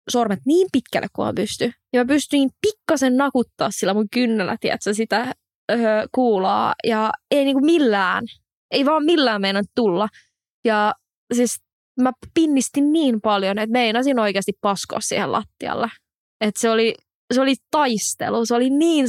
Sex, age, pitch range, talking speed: female, 20-39, 205-255 Hz, 150 wpm